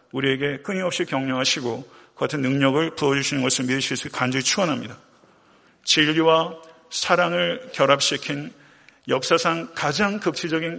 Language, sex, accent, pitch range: Korean, male, native, 135-175 Hz